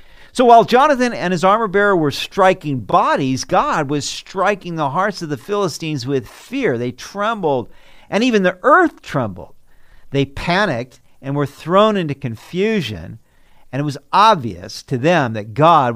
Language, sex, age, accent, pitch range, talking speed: English, male, 50-69, American, 125-180 Hz, 155 wpm